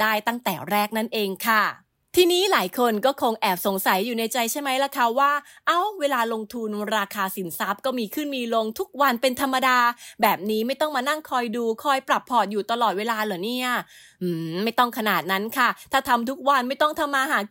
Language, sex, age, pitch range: English, female, 20-39, 215-275 Hz